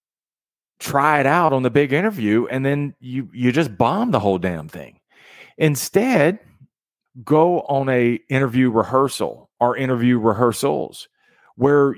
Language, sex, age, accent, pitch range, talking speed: English, male, 40-59, American, 110-155 Hz, 135 wpm